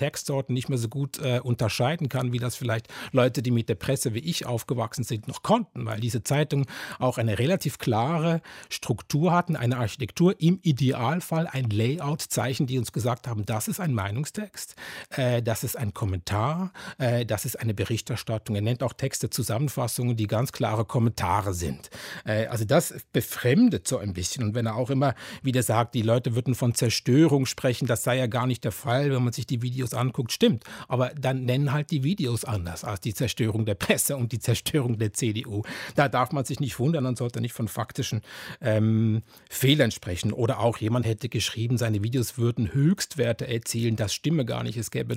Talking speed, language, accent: 195 wpm, German, German